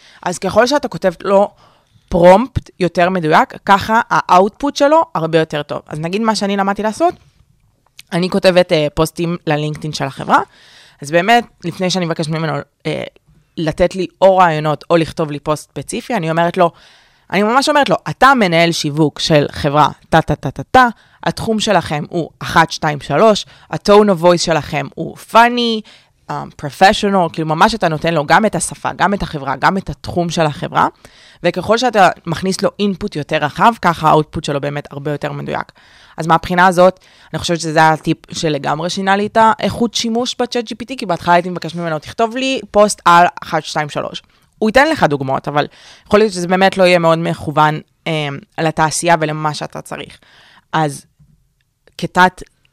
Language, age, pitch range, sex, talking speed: Hebrew, 20-39, 150-195 Hz, female, 170 wpm